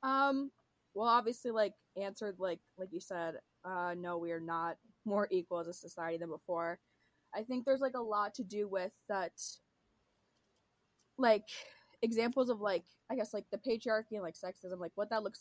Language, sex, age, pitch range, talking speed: English, female, 20-39, 180-230 Hz, 185 wpm